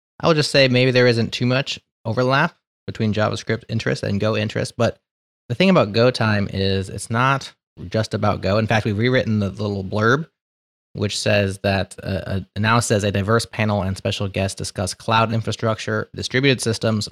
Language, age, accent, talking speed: English, 20-39, American, 180 wpm